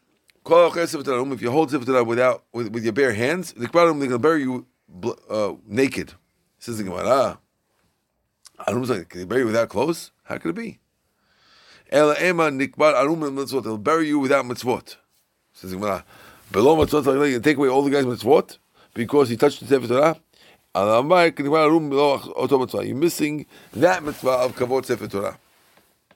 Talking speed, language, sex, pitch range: 120 wpm, English, male, 115-150 Hz